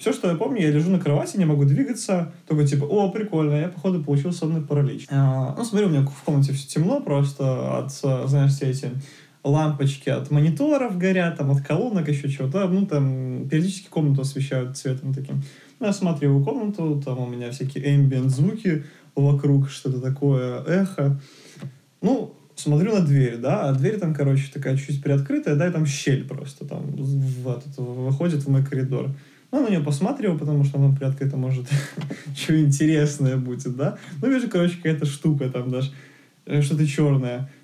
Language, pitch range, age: Russian, 135-160 Hz, 20-39